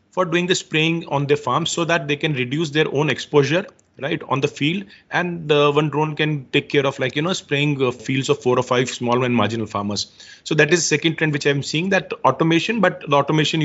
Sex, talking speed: male, 245 wpm